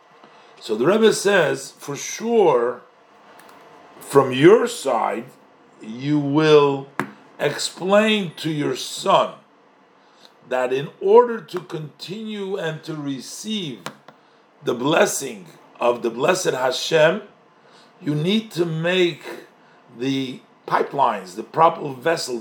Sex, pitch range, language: male, 135-200 Hz, English